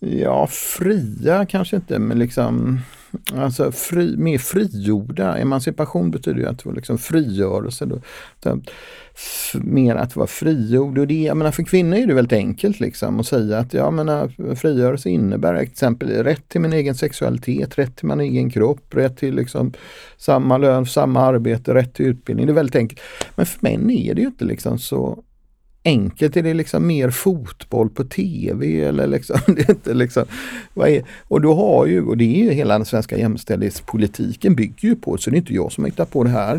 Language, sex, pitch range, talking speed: Swedish, male, 115-150 Hz, 185 wpm